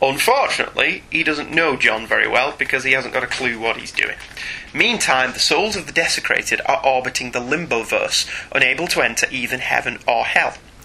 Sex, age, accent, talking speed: male, 30-49, British, 185 wpm